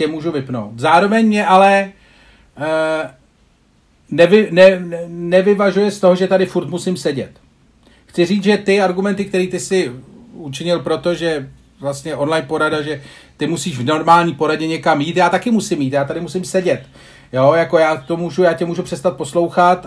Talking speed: 170 wpm